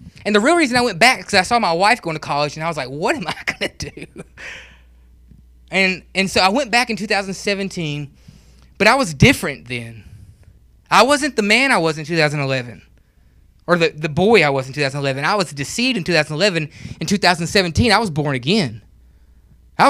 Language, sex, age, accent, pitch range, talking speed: English, male, 20-39, American, 145-220 Hz, 200 wpm